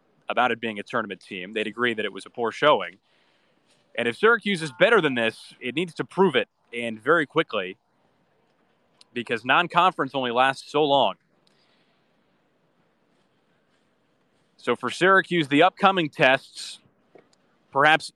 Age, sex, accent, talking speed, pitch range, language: 30-49, male, American, 140 wpm, 125-165 Hz, English